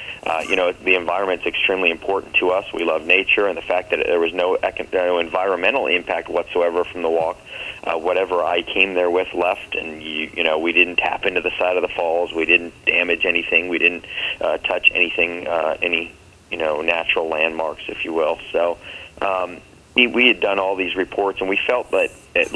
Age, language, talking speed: 30-49, English, 205 wpm